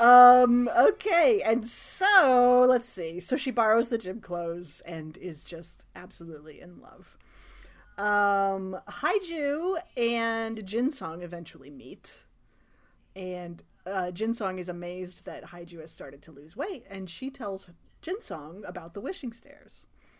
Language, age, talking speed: English, 30-49, 130 wpm